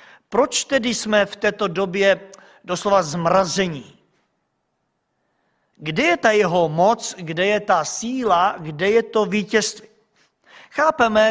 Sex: male